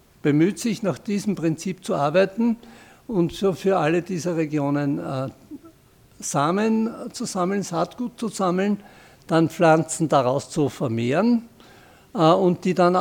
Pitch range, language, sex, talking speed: 140-180 Hz, German, male, 125 wpm